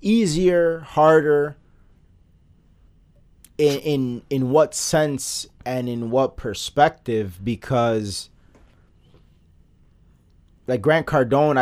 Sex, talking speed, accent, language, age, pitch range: male, 75 wpm, American, English, 30-49, 95-140 Hz